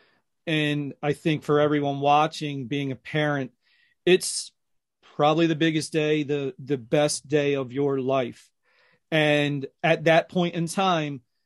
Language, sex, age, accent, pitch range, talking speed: English, male, 40-59, American, 140-155 Hz, 140 wpm